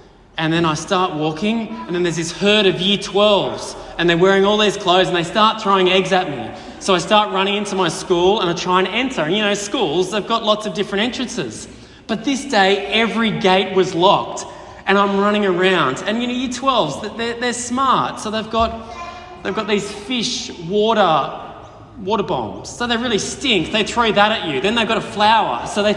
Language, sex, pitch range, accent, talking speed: English, male, 185-220 Hz, Australian, 215 wpm